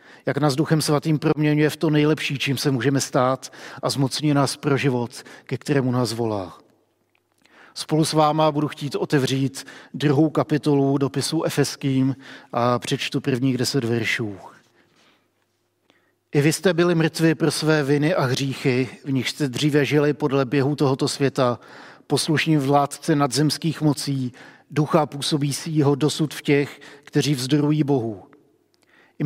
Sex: male